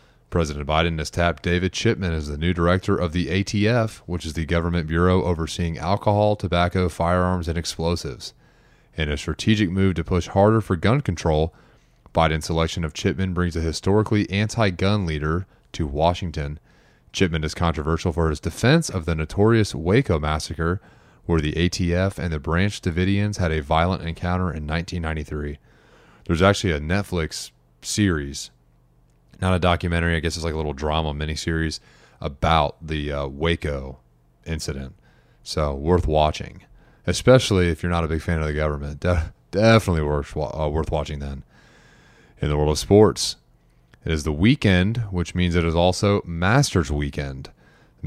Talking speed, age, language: 160 wpm, 30-49, English